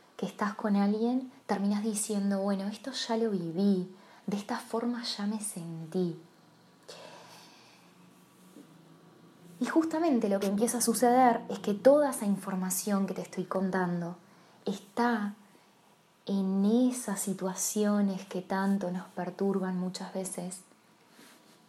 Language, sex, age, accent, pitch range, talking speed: Spanish, female, 20-39, Argentinian, 180-205 Hz, 120 wpm